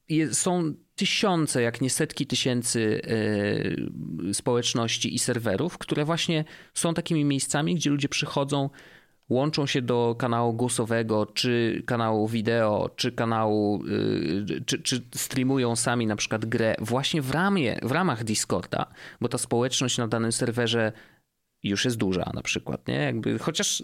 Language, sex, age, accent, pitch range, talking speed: Polish, male, 30-49, native, 110-145 Hz, 130 wpm